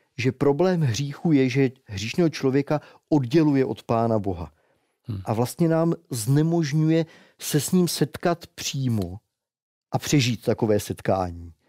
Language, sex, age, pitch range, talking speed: Czech, male, 40-59, 115-150 Hz, 125 wpm